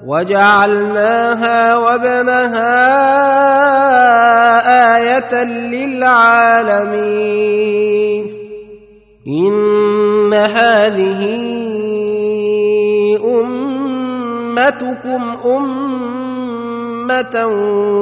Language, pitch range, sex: Arabic, 210-255 Hz, male